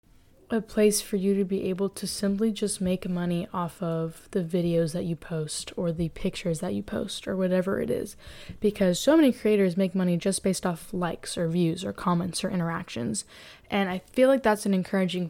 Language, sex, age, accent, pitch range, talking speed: English, female, 10-29, American, 175-205 Hz, 205 wpm